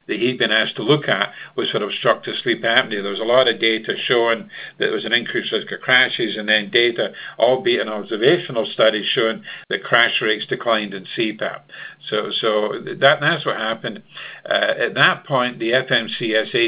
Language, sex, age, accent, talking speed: English, male, 50-69, American, 190 wpm